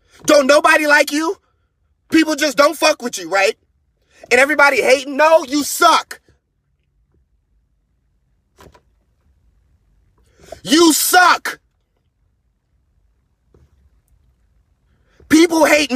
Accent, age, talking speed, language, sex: American, 30-49, 80 wpm, English, male